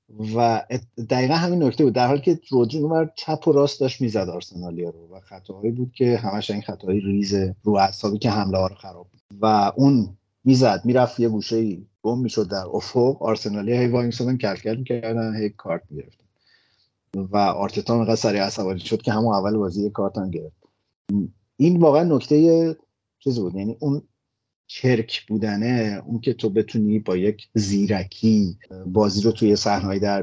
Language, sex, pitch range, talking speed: Persian, male, 100-115 Hz, 165 wpm